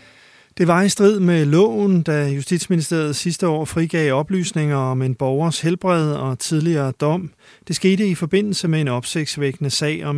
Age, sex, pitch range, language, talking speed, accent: 30-49, male, 145-180 Hz, Danish, 165 wpm, native